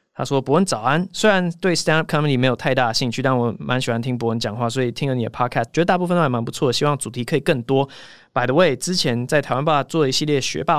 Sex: male